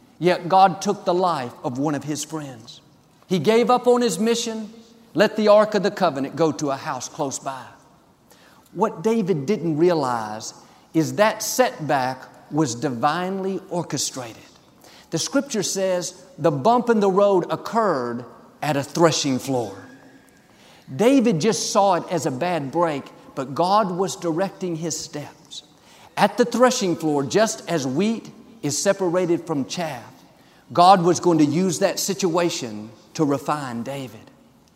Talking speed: 150 wpm